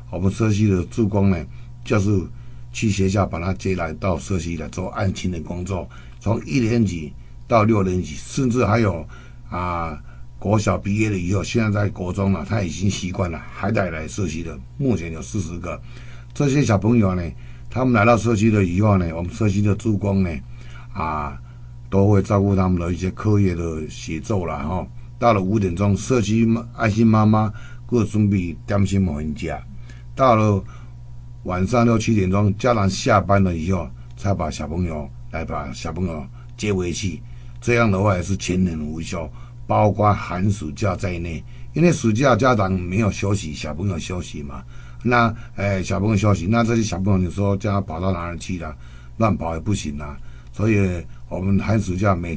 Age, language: 60-79, Chinese